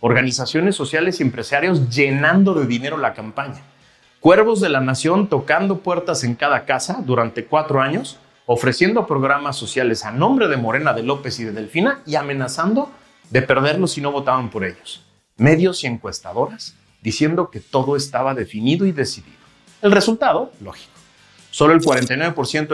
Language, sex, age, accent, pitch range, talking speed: Spanish, male, 40-59, Mexican, 125-165 Hz, 155 wpm